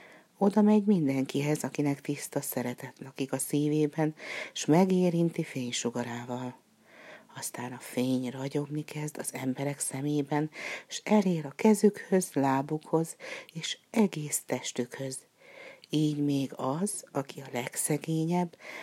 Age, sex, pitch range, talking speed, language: 60-79, female, 140-175 Hz, 110 wpm, Hungarian